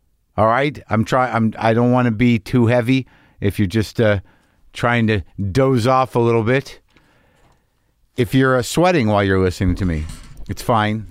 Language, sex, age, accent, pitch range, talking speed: English, male, 50-69, American, 110-135 Hz, 185 wpm